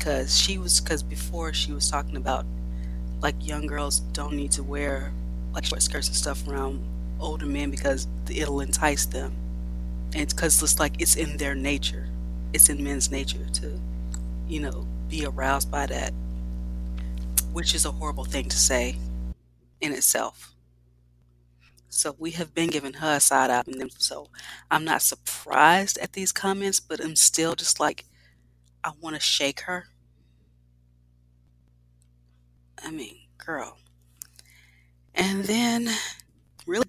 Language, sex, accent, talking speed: English, female, American, 145 wpm